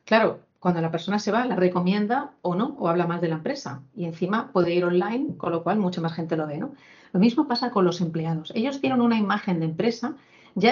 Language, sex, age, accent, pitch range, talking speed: Spanish, female, 40-59, Spanish, 170-220 Hz, 240 wpm